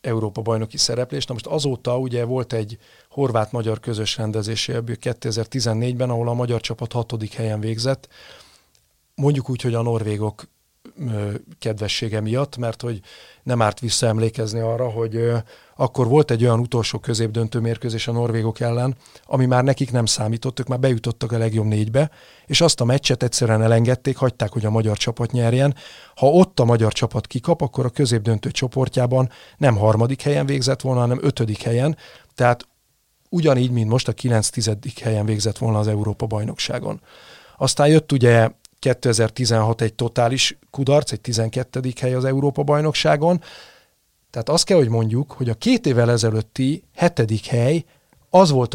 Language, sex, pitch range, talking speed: Hungarian, male, 115-135 Hz, 150 wpm